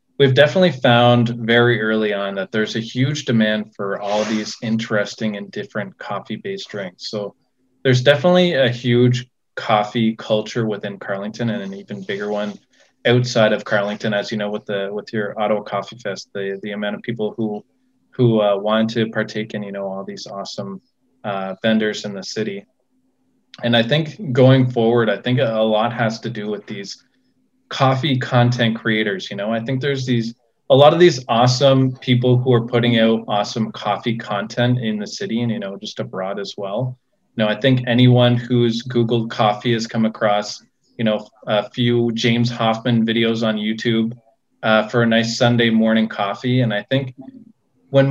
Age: 20-39